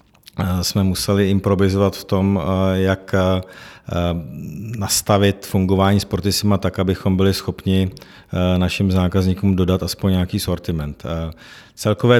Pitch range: 90-100 Hz